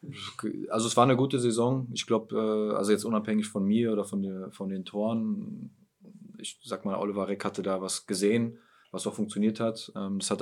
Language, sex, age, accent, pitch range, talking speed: German, male, 20-39, German, 100-115 Hz, 195 wpm